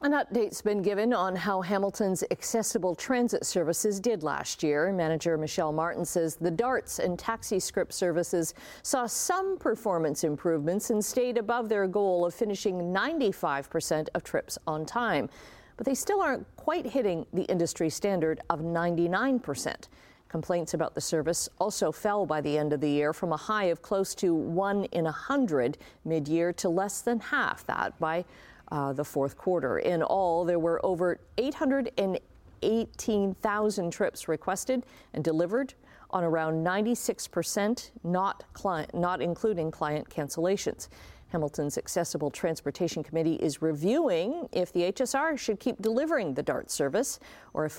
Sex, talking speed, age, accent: female, 150 wpm, 50-69, American